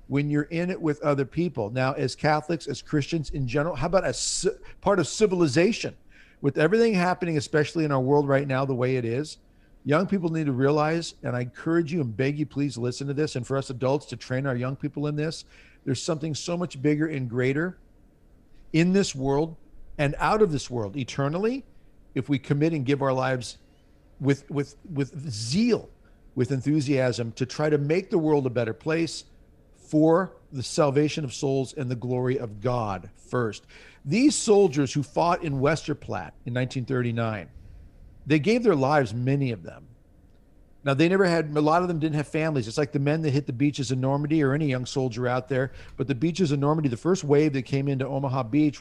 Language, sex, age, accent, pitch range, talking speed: English, male, 50-69, American, 130-160 Hz, 205 wpm